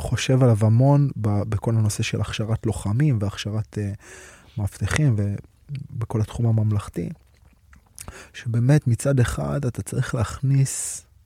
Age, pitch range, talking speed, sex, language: 20-39, 105-130 Hz, 110 wpm, male, Hebrew